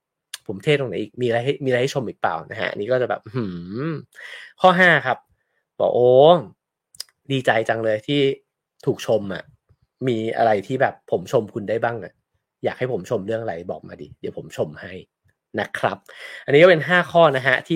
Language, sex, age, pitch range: English, male, 20-39, 125-170 Hz